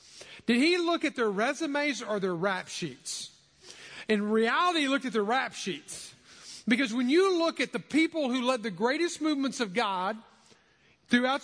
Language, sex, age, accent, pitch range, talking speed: English, male, 40-59, American, 215-275 Hz, 175 wpm